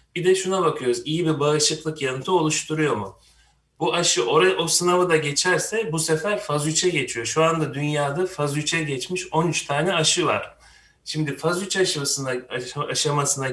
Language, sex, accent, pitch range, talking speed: Turkish, male, native, 125-160 Hz, 160 wpm